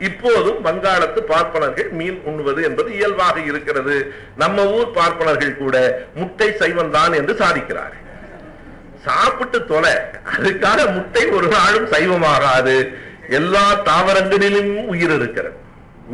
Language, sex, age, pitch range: Tamil, male, 50-69, 160-230 Hz